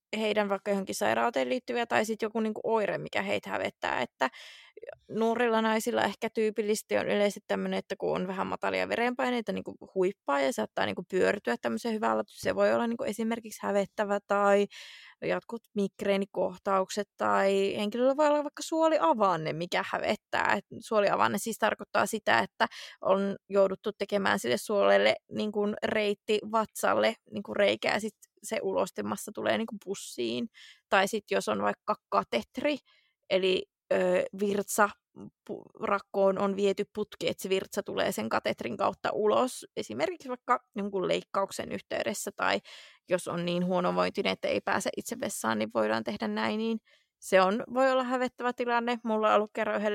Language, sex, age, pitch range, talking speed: Finnish, female, 20-39, 190-225 Hz, 150 wpm